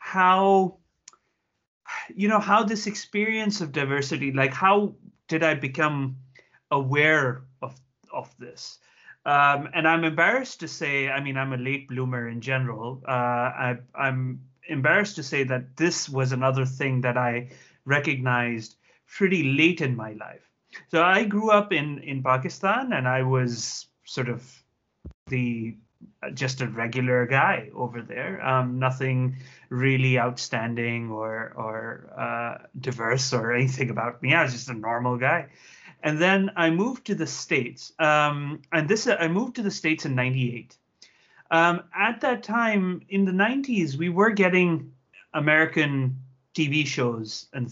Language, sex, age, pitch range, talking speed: English, male, 30-49, 125-170 Hz, 150 wpm